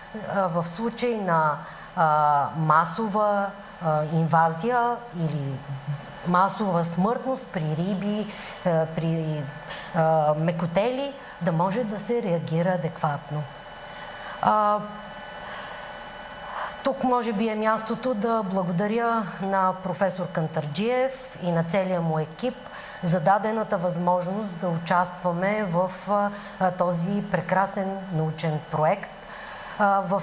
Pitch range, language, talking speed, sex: 175-215 Hz, Bulgarian, 100 wpm, female